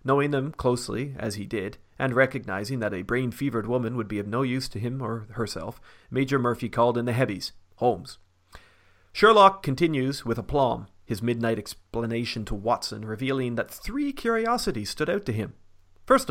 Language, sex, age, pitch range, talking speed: English, male, 40-59, 105-135 Hz, 170 wpm